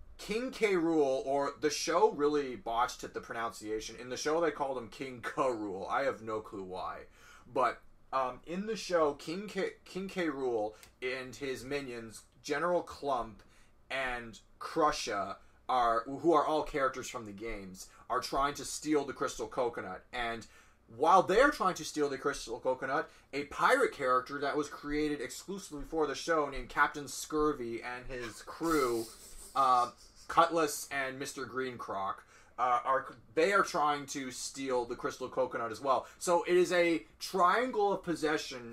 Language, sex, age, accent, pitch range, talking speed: English, male, 30-49, American, 125-165 Hz, 165 wpm